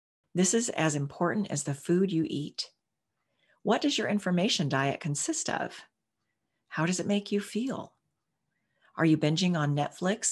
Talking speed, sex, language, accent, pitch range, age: 155 wpm, female, English, American, 145-195 Hz, 40-59